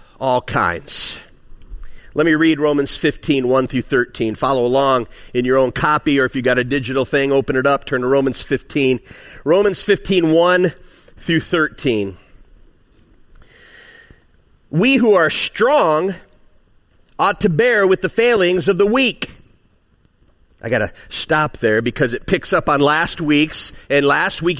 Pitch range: 150-250 Hz